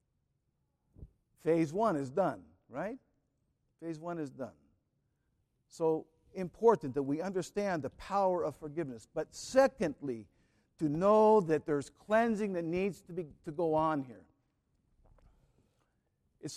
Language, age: English, 50-69